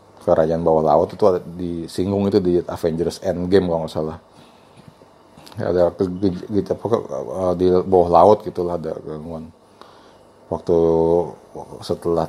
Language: Indonesian